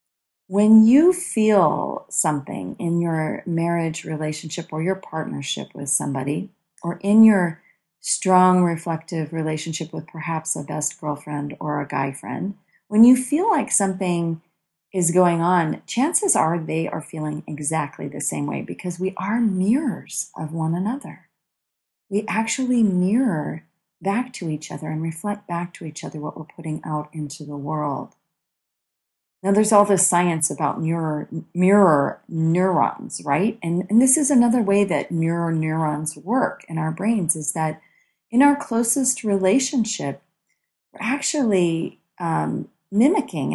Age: 40-59